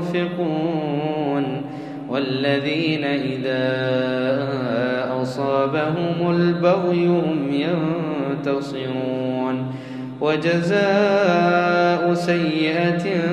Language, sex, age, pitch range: Arabic, male, 20-39, 140-175 Hz